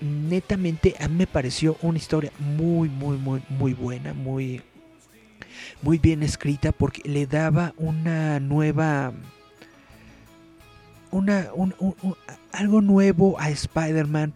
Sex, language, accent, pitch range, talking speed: male, Spanish, Mexican, 130-150 Hz, 120 wpm